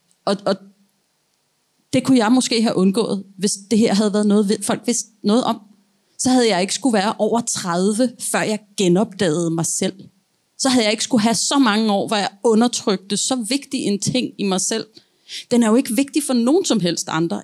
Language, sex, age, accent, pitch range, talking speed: Danish, female, 30-49, native, 185-230 Hz, 205 wpm